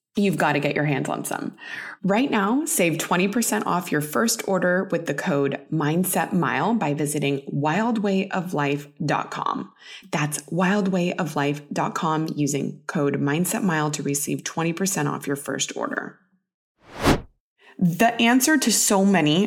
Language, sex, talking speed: English, female, 125 wpm